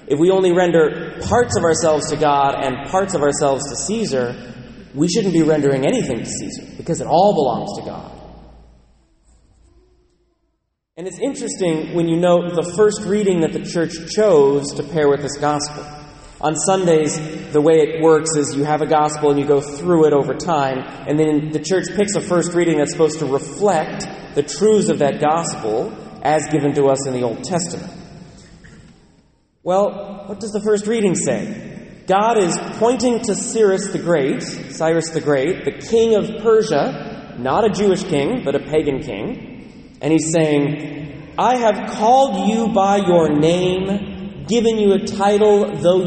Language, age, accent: English, 30-49, American